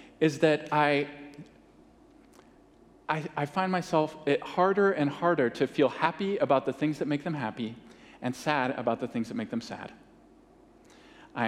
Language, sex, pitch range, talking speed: English, male, 140-195 Hz, 160 wpm